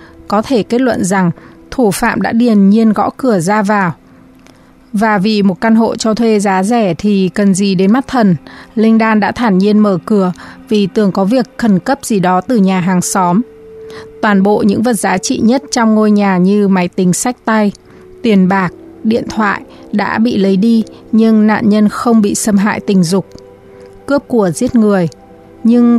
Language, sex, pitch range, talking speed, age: Vietnamese, female, 195-230 Hz, 195 wpm, 20-39